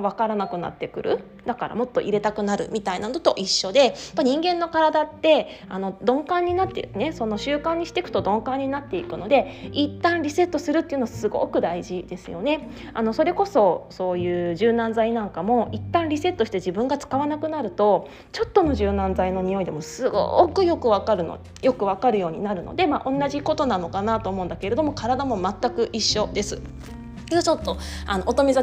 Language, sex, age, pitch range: Japanese, female, 20-39, 200-305 Hz